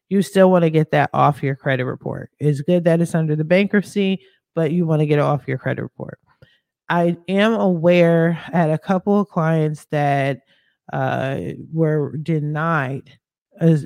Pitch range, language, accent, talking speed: 150-185 Hz, English, American, 175 wpm